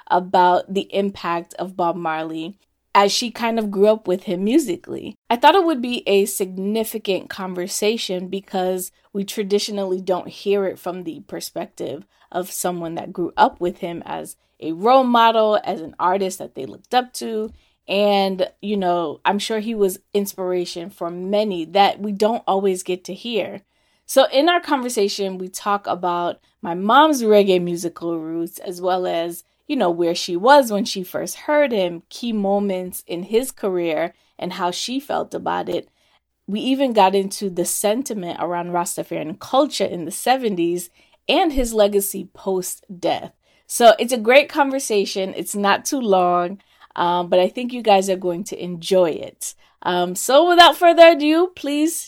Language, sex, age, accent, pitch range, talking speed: English, female, 20-39, American, 180-230 Hz, 170 wpm